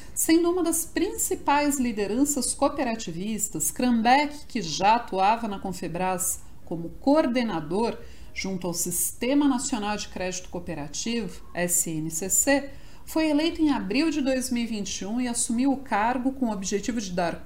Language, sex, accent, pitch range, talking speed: Portuguese, female, Brazilian, 195-275 Hz, 125 wpm